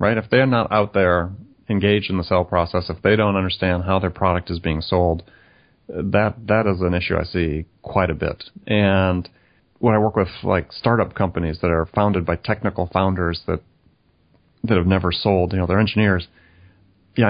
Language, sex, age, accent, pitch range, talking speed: English, male, 30-49, American, 90-110 Hz, 190 wpm